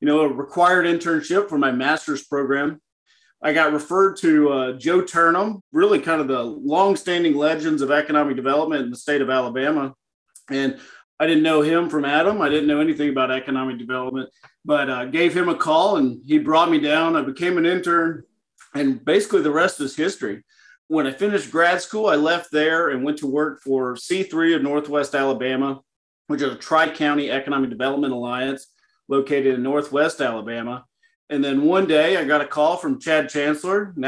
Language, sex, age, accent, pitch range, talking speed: English, male, 40-59, American, 135-170 Hz, 185 wpm